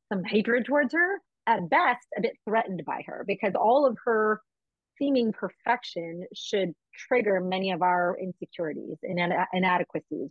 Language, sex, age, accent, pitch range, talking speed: English, female, 30-49, American, 195-255 Hz, 145 wpm